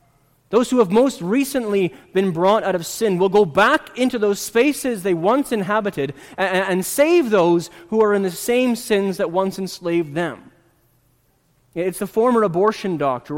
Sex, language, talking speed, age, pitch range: male, English, 170 wpm, 30-49, 170-230 Hz